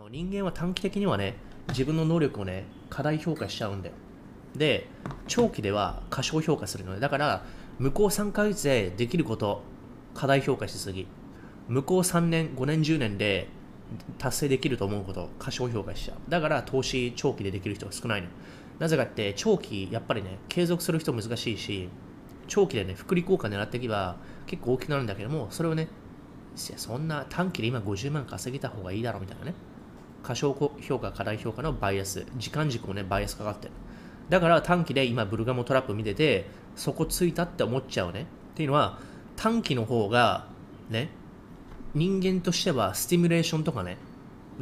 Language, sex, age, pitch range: Japanese, male, 20-39, 105-155 Hz